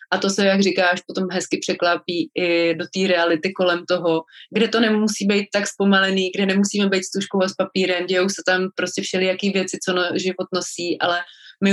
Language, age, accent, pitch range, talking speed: Czech, 20-39, native, 185-215 Hz, 205 wpm